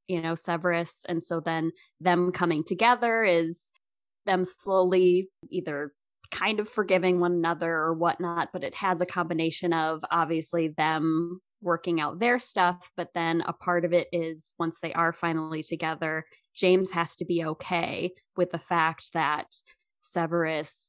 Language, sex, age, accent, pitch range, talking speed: English, female, 20-39, American, 160-185 Hz, 155 wpm